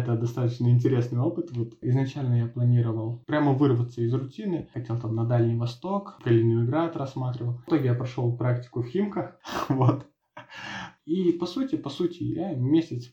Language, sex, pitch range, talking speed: Russian, male, 120-150 Hz, 160 wpm